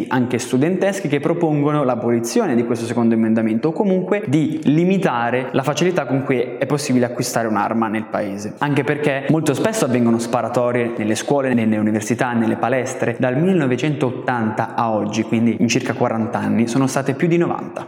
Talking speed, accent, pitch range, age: 165 wpm, native, 120-160 Hz, 20-39